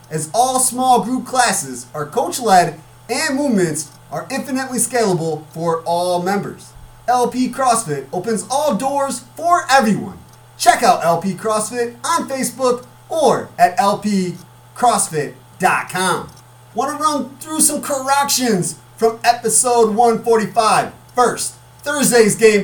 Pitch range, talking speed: 180-235 Hz, 115 wpm